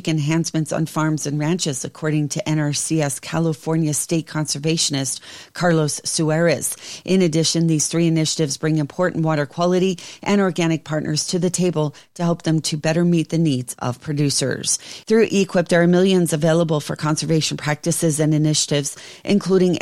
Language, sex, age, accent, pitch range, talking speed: English, female, 40-59, American, 150-170 Hz, 150 wpm